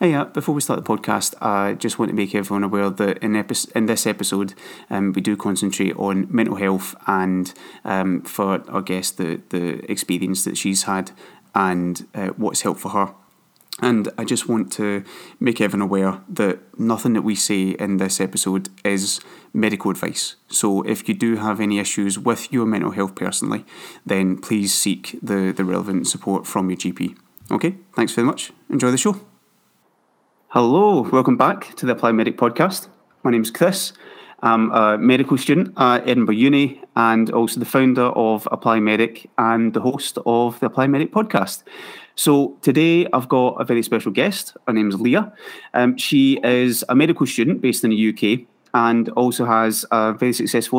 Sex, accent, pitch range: male, British, 100-125 Hz